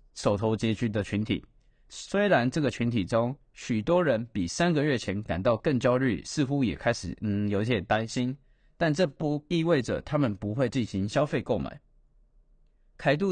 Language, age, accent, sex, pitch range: Chinese, 20-39, native, male, 105-150 Hz